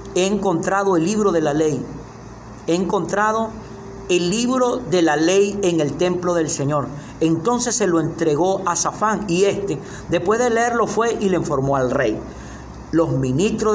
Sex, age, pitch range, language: male, 50-69, 155-195 Hz, Spanish